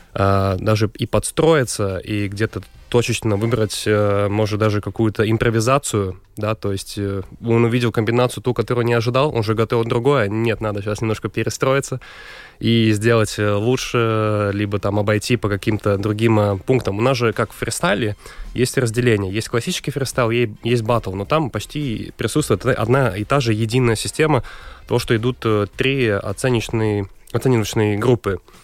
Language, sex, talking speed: Russian, male, 145 wpm